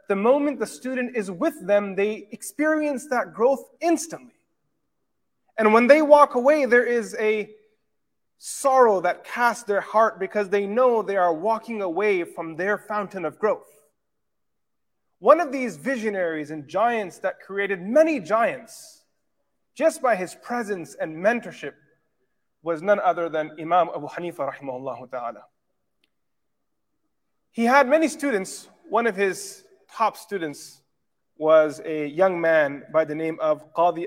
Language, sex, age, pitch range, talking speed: English, male, 30-49, 170-240 Hz, 140 wpm